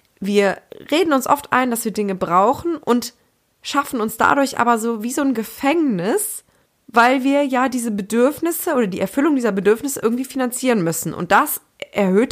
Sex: female